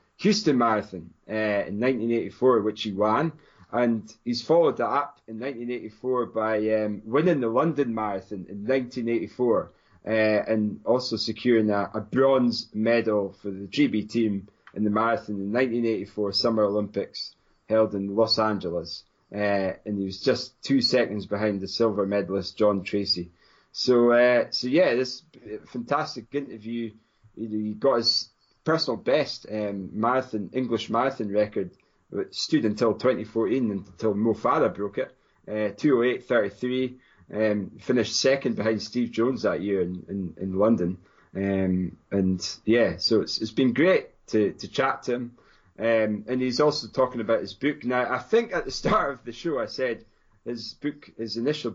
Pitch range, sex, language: 105-125 Hz, male, English